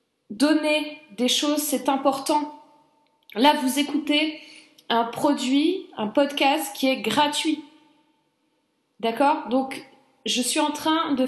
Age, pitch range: 20-39, 260-305 Hz